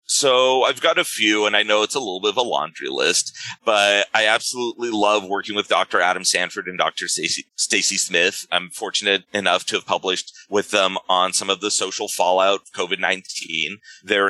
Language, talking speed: English, 195 wpm